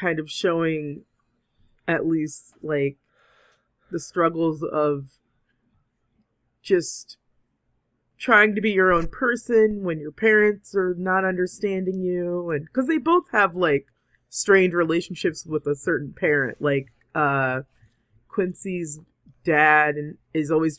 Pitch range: 145-180 Hz